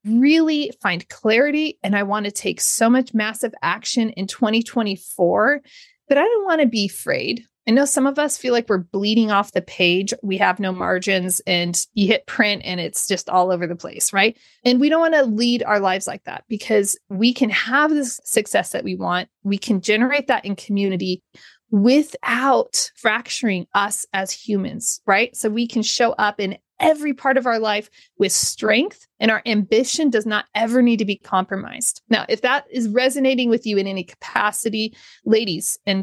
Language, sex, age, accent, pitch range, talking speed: English, female, 30-49, American, 200-255 Hz, 190 wpm